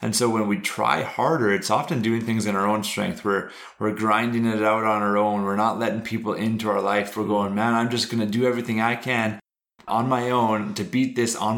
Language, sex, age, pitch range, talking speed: English, male, 30-49, 100-115 Hz, 240 wpm